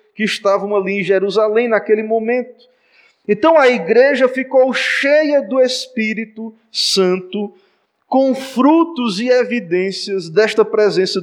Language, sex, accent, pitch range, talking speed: Portuguese, male, Brazilian, 220-270 Hz, 110 wpm